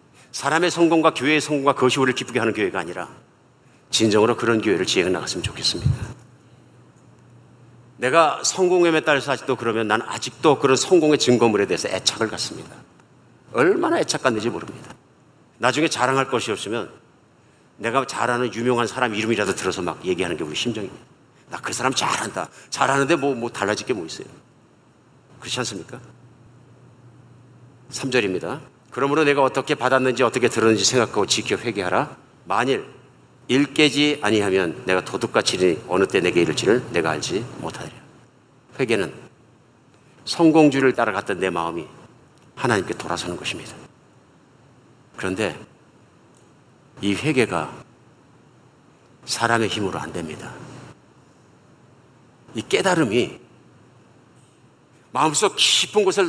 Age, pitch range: 50-69, 115-140 Hz